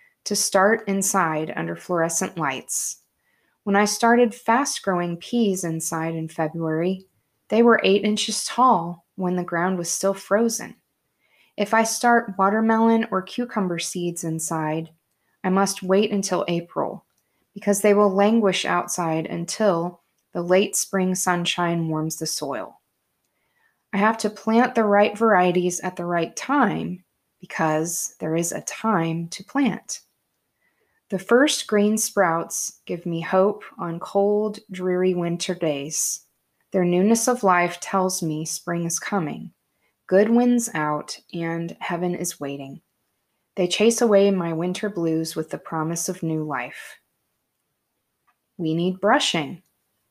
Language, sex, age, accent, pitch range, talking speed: English, female, 20-39, American, 170-215 Hz, 135 wpm